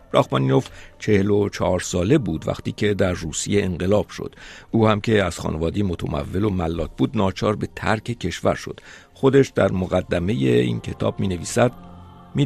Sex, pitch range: male, 85-110 Hz